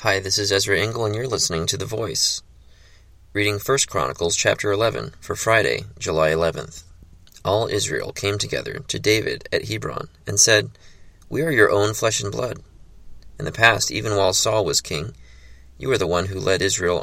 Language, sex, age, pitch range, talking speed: English, male, 30-49, 85-105 Hz, 185 wpm